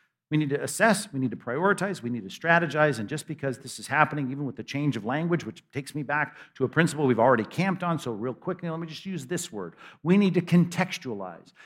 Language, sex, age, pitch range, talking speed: English, male, 50-69, 145-180 Hz, 245 wpm